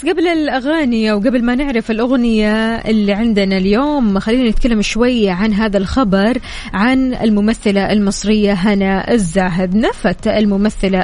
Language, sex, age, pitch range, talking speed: Arabic, female, 20-39, 195-230 Hz, 120 wpm